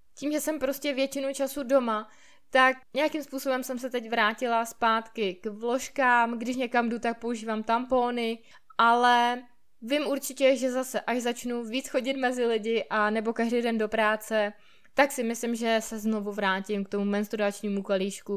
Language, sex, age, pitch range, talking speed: Czech, female, 20-39, 215-275 Hz, 165 wpm